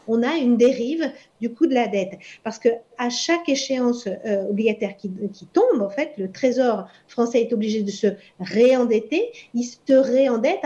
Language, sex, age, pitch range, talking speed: French, female, 40-59, 225-285 Hz, 175 wpm